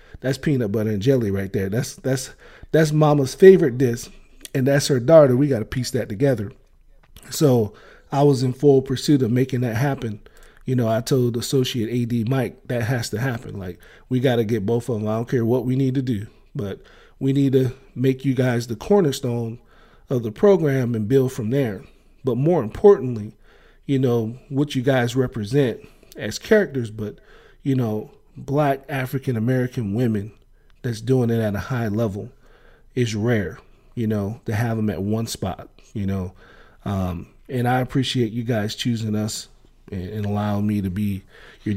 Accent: American